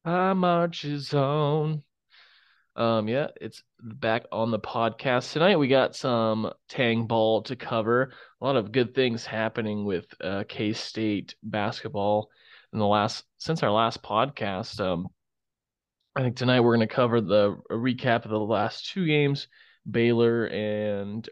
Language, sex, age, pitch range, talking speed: English, male, 20-39, 105-125 Hz, 155 wpm